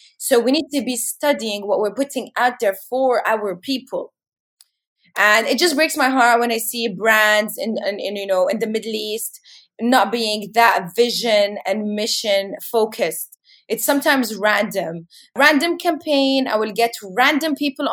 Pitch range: 205-260 Hz